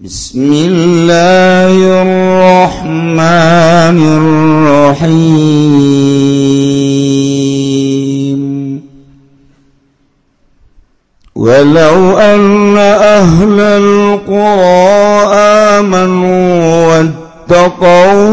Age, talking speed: 50-69, 35 wpm